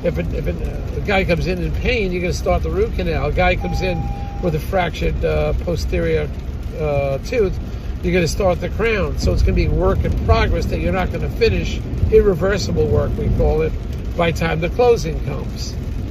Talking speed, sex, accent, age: 215 wpm, male, American, 50-69